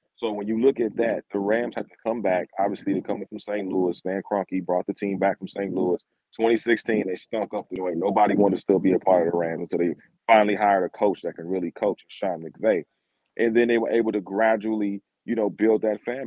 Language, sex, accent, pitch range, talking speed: English, male, American, 95-110 Hz, 250 wpm